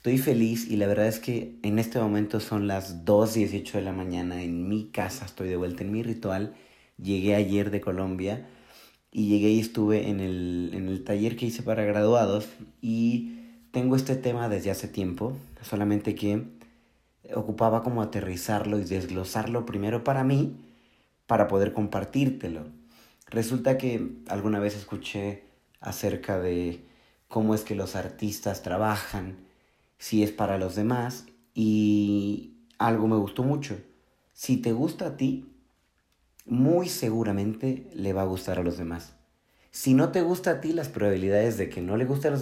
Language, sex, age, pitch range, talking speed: Spanish, male, 30-49, 100-120 Hz, 160 wpm